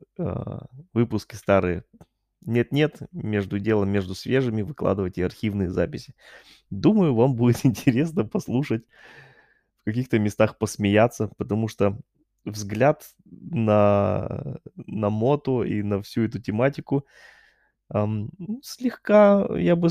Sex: male